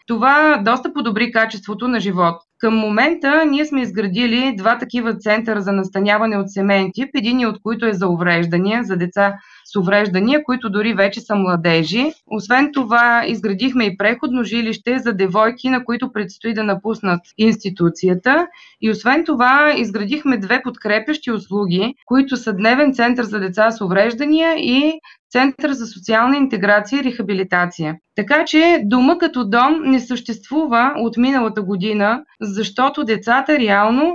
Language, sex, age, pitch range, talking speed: Bulgarian, female, 20-39, 210-270 Hz, 145 wpm